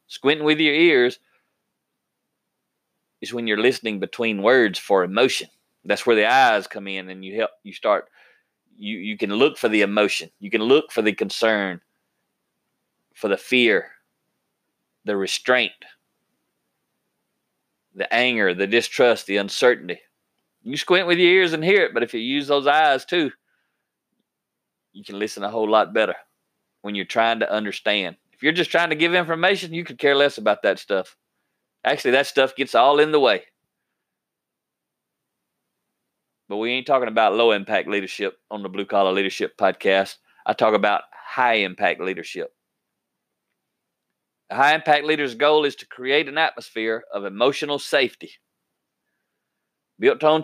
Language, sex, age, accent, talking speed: English, male, 30-49, American, 150 wpm